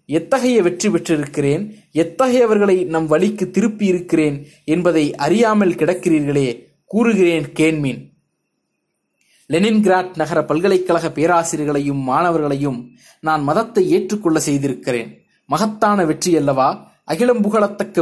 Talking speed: 95 wpm